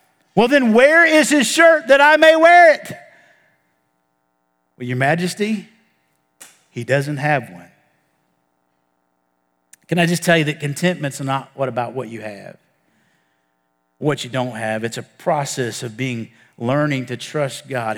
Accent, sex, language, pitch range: American, male, English, 110-175 Hz